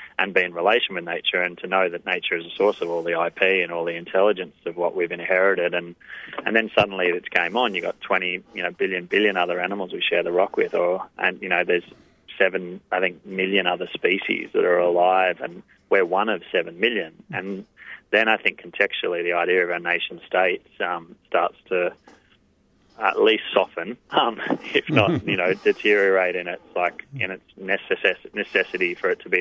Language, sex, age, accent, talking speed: English, male, 20-39, Australian, 205 wpm